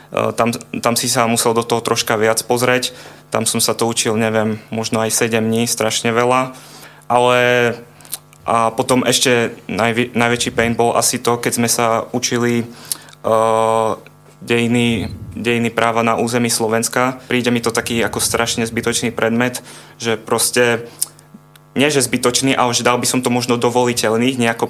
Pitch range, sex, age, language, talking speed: 115-125 Hz, male, 20-39, Slovak, 150 wpm